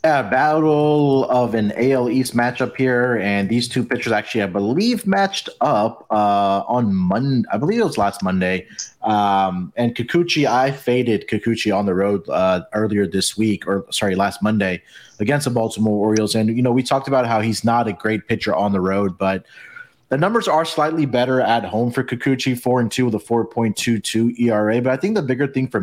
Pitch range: 105-130 Hz